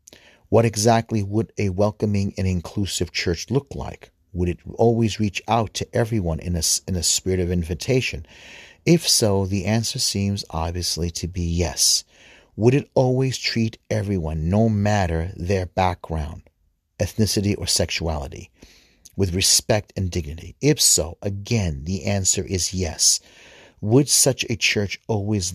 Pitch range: 85-110 Hz